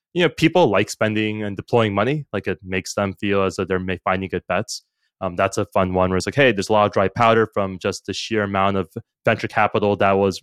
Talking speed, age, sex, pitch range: 255 wpm, 20-39, male, 100-125 Hz